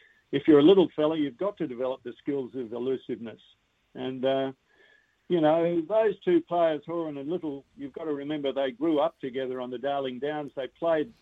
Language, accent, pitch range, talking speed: English, Australian, 130-160 Hz, 200 wpm